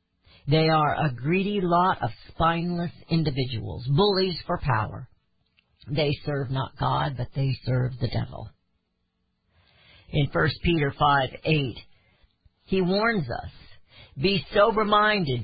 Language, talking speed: English, 115 wpm